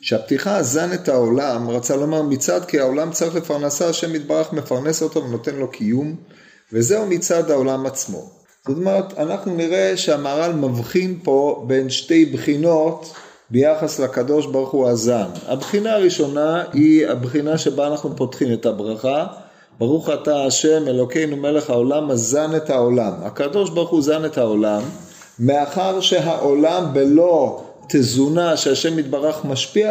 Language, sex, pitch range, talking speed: Hebrew, male, 135-170 Hz, 135 wpm